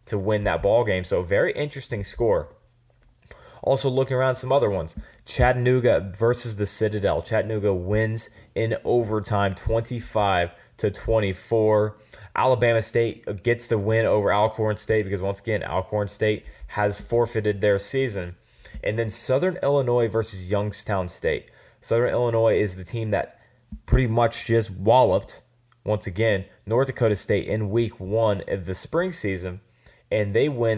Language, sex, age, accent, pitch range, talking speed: English, male, 20-39, American, 100-120 Hz, 150 wpm